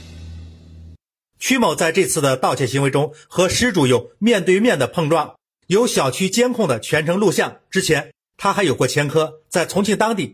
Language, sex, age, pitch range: Chinese, male, 50-69, 130-200 Hz